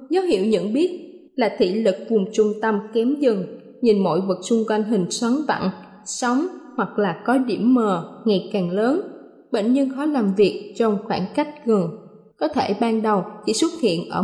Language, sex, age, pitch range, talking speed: Vietnamese, female, 20-39, 210-285 Hz, 195 wpm